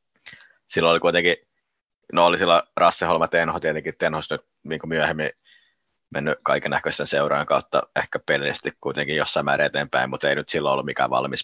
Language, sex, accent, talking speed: Finnish, male, native, 155 wpm